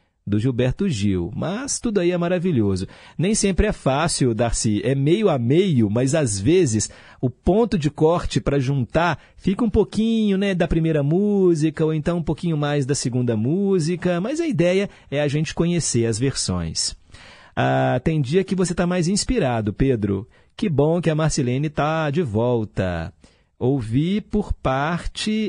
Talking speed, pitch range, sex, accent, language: 165 wpm, 115-160 Hz, male, Brazilian, Portuguese